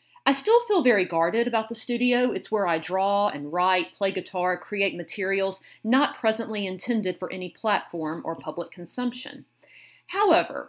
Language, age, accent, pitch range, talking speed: English, 40-59, American, 175-245 Hz, 155 wpm